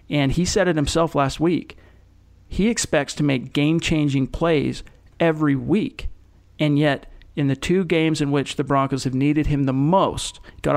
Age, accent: 40-59, American